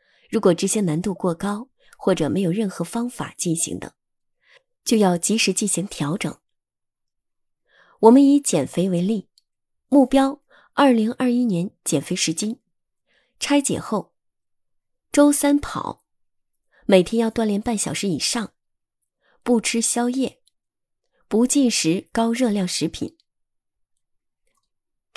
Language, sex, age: Chinese, female, 20-39